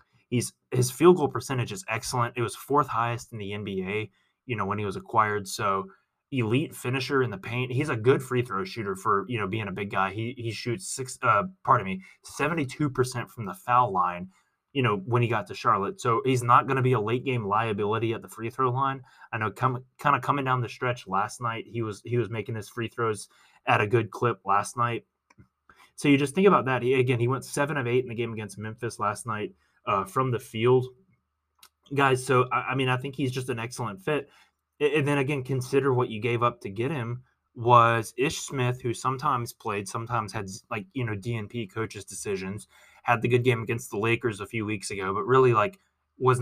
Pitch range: 110-130 Hz